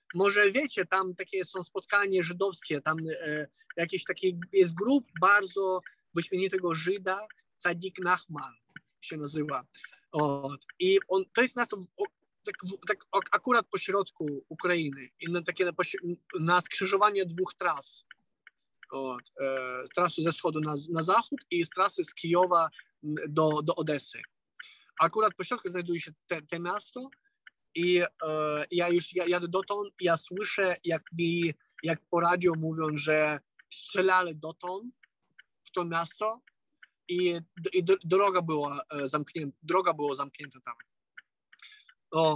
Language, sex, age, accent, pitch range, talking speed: Polish, male, 20-39, native, 160-195 Hz, 130 wpm